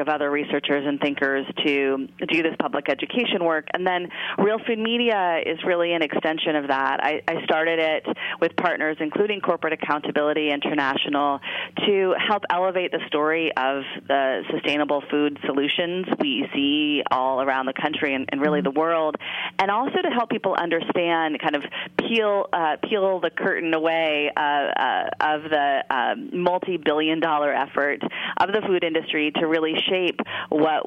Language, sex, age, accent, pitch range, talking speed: English, female, 30-49, American, 145-180 Hz, 165 wpm